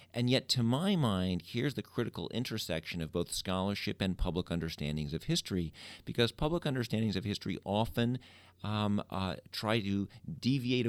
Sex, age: male, 50-69